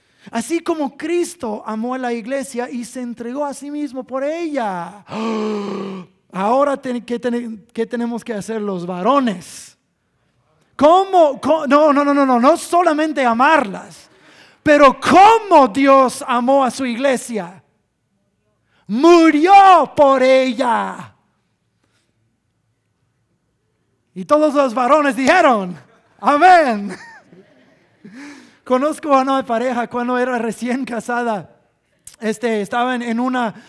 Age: 30-49